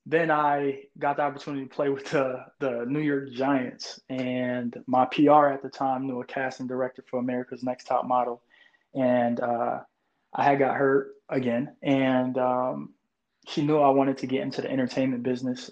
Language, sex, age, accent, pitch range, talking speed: English, male, 20-39, American, 125-140 Hz, 180 wpm